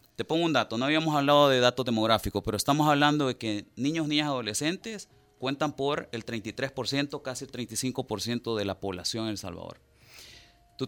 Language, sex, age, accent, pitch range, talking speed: Spanish, male, 30-49, Venezuelan, 110-140 Hz, 175 wpm